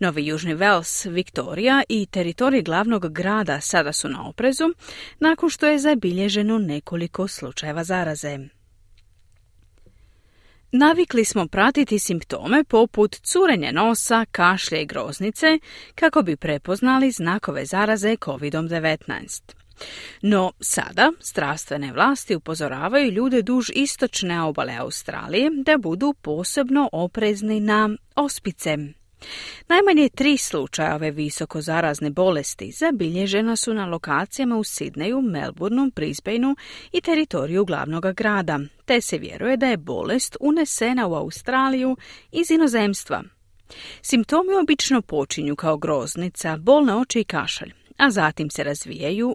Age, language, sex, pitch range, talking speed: 40-59, Croatian, female, 155-265 Hz, 115 wpm